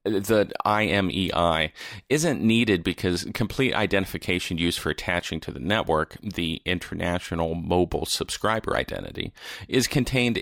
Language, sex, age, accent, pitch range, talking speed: English, male, 30-49, American, 85-105 Hz, 115 wpm